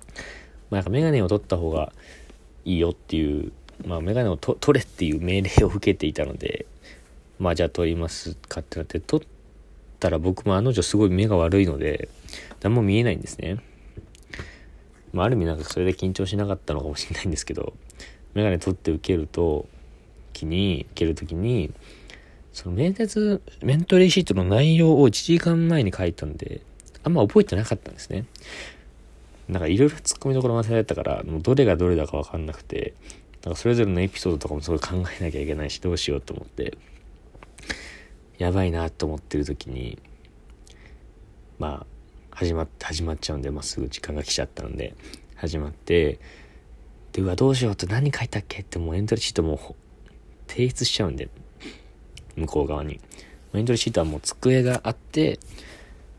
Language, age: Japanese, 40-59